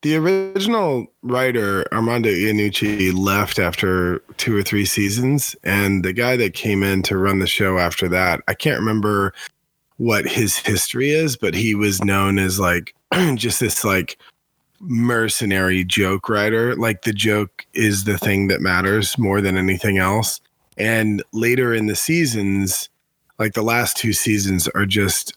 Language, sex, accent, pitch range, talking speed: English, male, American, 95-115 Hz, 150 wpm